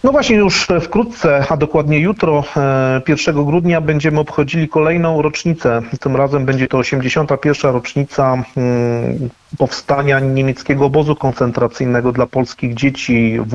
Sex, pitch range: male, 130-155 Hz